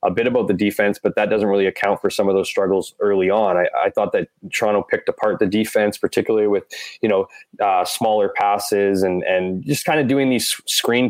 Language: English